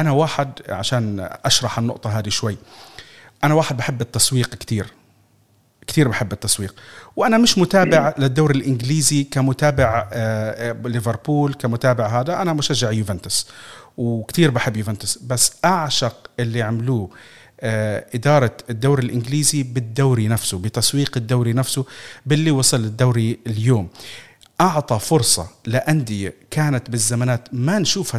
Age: 40-59